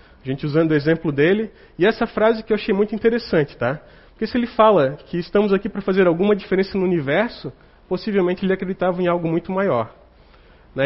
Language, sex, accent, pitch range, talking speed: Portuguese, male, Brazilian, 145-195 Hz, 200 wpm